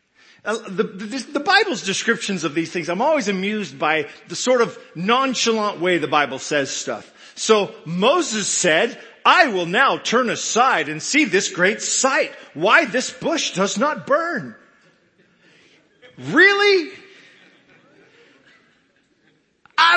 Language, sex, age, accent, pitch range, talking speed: English, male, 40-59, American, 190-295 Hz, 130 wpm